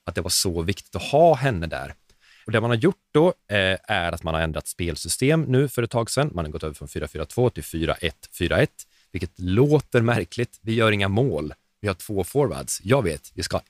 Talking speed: 225 wpm